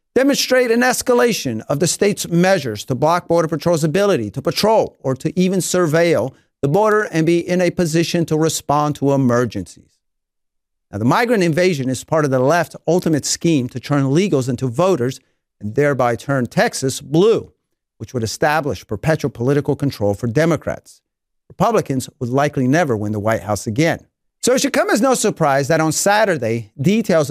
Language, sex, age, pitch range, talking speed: English, male, 50-69, 130-175 Hz, 170 wpm